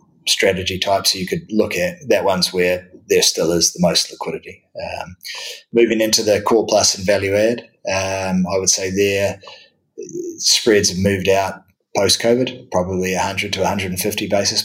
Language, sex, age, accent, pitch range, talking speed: English, male, 20-39, Australian, 95-110 Hz, 165 wpm